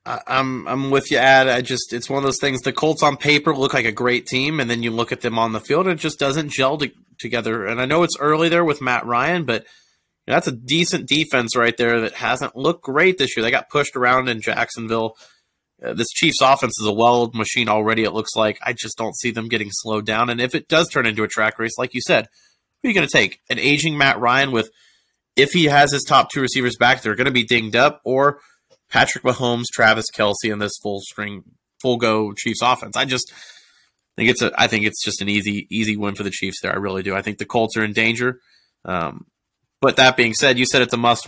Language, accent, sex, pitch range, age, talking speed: English, American, male, 110-135 Hz, 30-49, 255 wpm